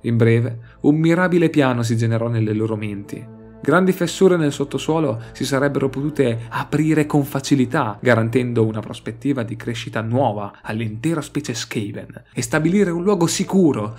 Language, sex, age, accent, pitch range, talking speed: Italian, male, 30-49, native, 110-145 Hz, 145 wpm